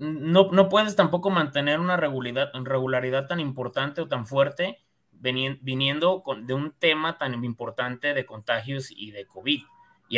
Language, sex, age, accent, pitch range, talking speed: Spanish, male, 30-49, Mexican, 125-160 Hz, 140 wpm